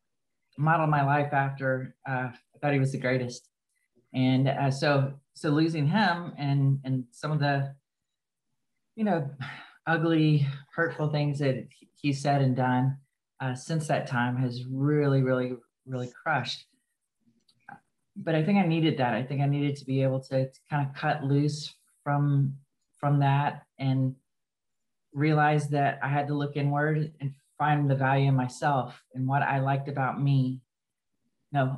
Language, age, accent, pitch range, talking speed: English, 30-49, American, 130-150 Hz, 160 wpm